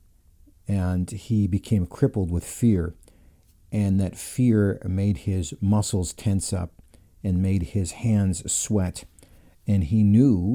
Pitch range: 85-105 Hz